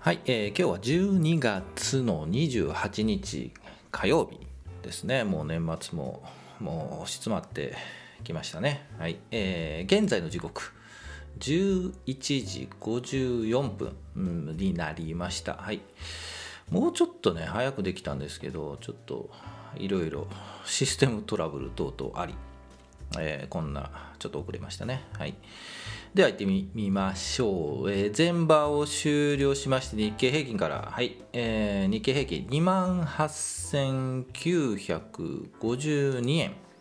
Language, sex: Japanese, male